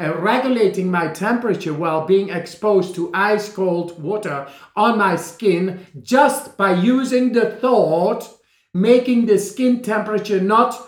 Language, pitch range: English, 185-250 Hz